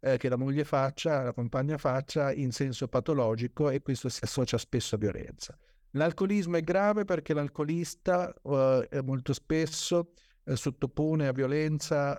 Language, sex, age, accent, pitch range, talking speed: Italian, male, 50-69, native, 130-155 Hz, 140 wpm